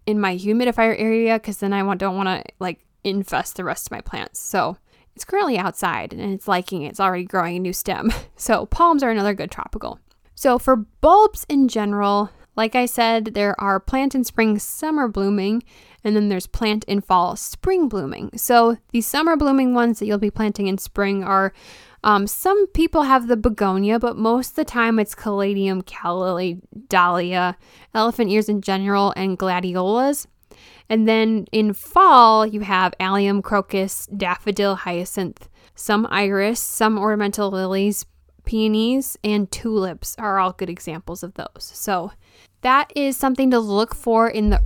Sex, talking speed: female, 170 wpm